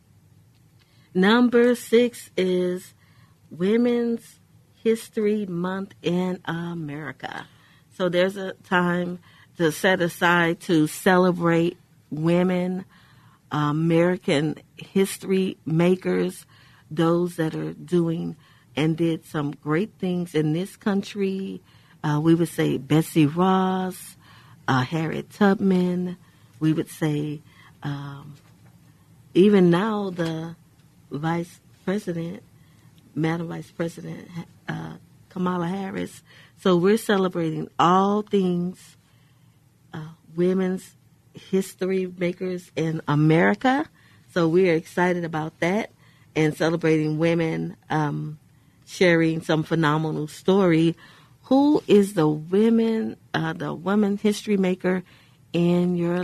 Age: 50-69